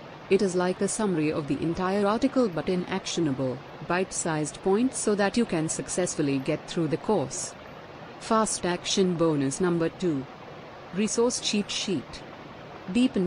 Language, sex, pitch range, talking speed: Hindi, female, 160-195 Hz, 145 wpm